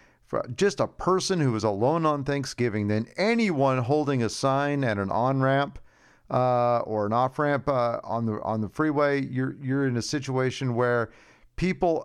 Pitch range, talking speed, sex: 120-170 Hz, 170 wpm, male